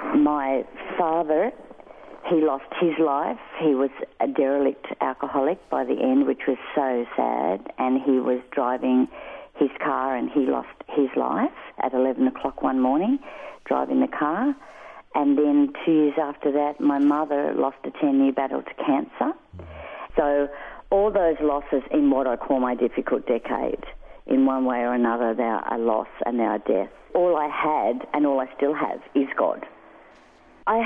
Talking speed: 170 wpm